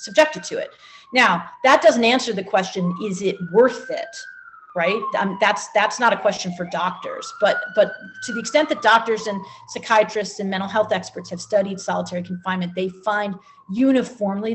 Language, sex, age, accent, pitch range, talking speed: English, female, 40-59, American, 185-225 Hz, 175 wpm